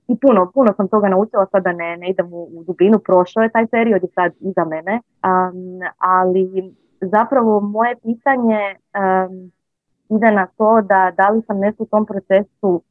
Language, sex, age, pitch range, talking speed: Croatian, female, 20-39, 170-205 Hz, 175 wpm